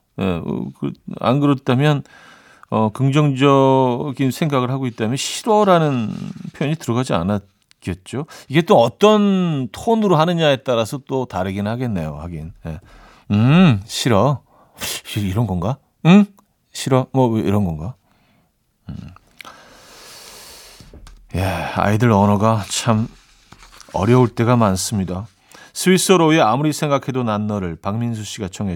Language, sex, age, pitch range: Korean, male, 40-59, 105-145 Hz